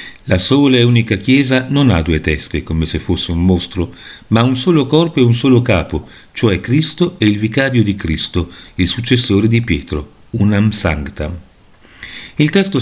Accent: native